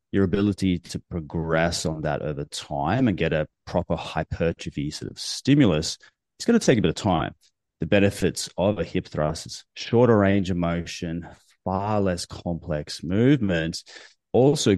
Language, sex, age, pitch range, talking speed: English, male, 30-49, 80-105 Hz, 160 wpm